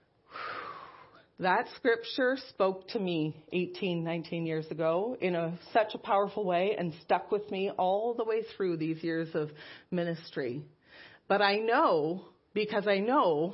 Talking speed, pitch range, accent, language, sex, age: 140 wpm, 170-225 Hz, American, English, female, 40-59